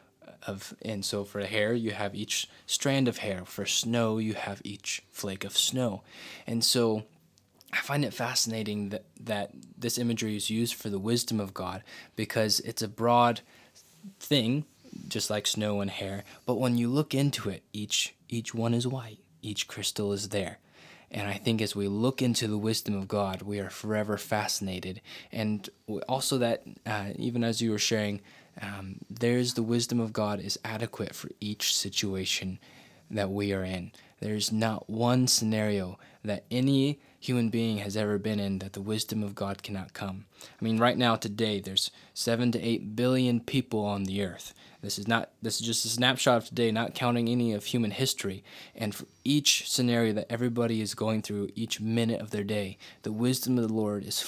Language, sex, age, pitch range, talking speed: English, male, 20-39, 100-120 Hz, 185 wpm